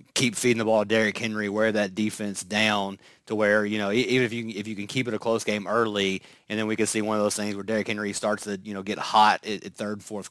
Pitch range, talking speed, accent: 105-120 Hz, 280 wpm, American